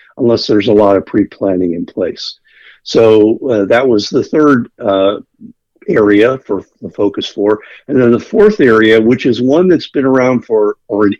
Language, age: English, 50-69